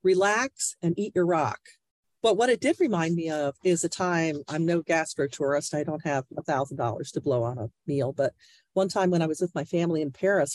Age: 50-69